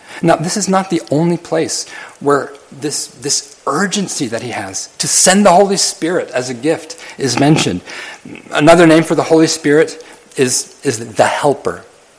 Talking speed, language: 165 wpm, English